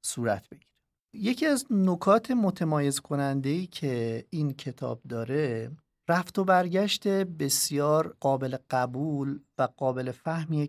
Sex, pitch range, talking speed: male, 130-160 Hz, 110 wpm